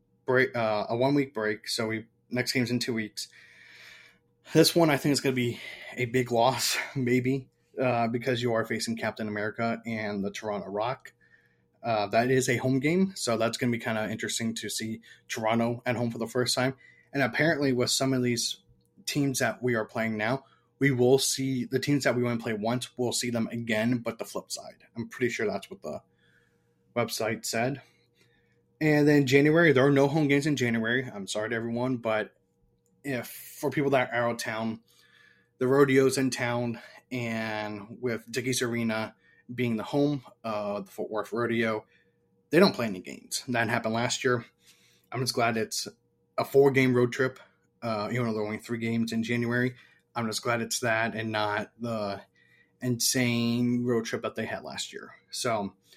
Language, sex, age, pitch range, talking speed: English, male, 20-39, 110-130 Hz, 190 wpm